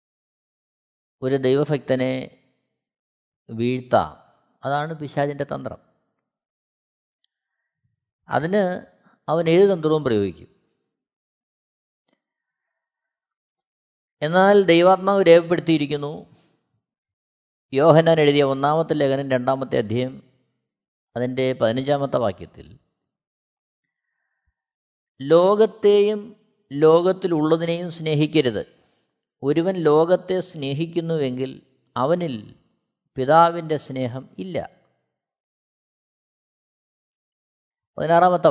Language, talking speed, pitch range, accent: Malayalam, 55 wpm, 135-175 Hz, native